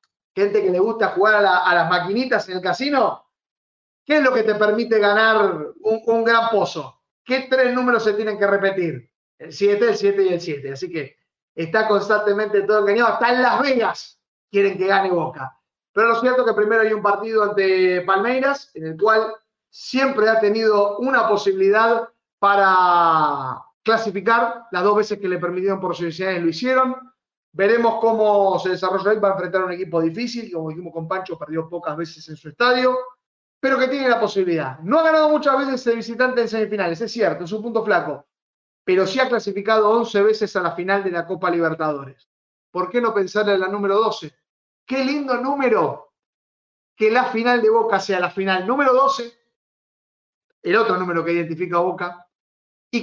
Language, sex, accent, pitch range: Spanish, male, Argentinian, 185-235 Hz